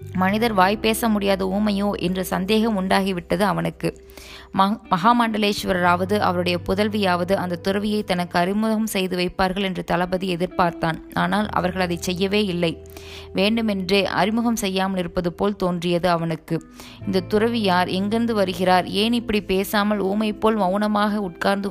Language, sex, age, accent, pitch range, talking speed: Tamil, female, 20-39, native, 180-210 Hz, 120 wpm